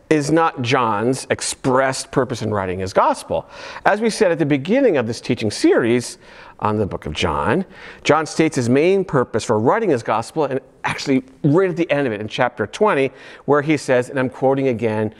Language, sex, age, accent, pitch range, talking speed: English, male, 50-69, American, 120-165 Hz, 200 wpm